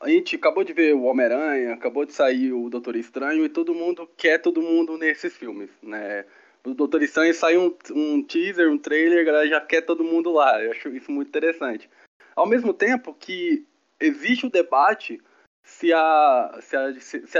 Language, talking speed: Portuguese, 195 wpm